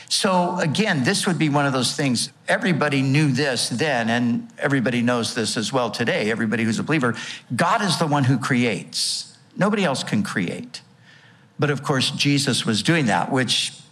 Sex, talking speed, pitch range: male, 180 wpm, 120-155 Hz